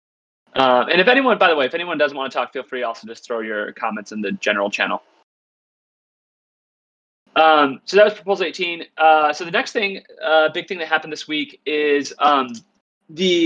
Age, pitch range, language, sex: 30-49, 135-200 Hz, English, male